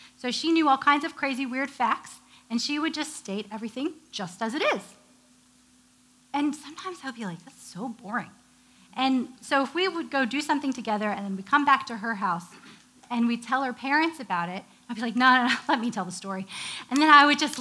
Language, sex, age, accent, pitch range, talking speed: English, female, 30-49, American, 210-285 Hz, 230 wpm